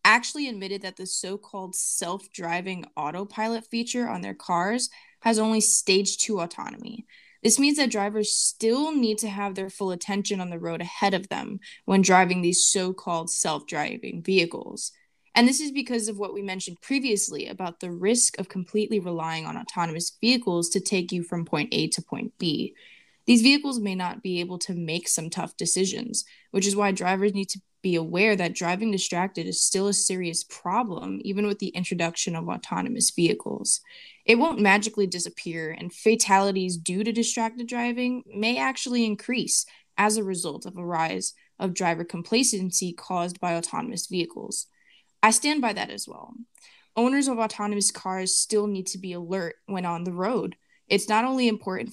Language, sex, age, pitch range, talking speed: English, female, 10-29, 180-225 Hz, 170 wpm